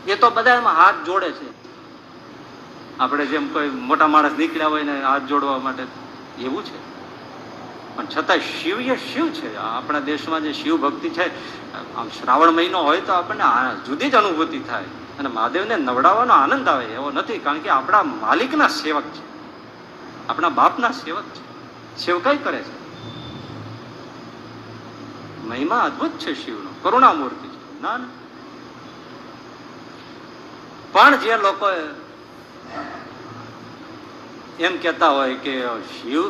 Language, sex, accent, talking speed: Gujarati, male, native, 90 wpm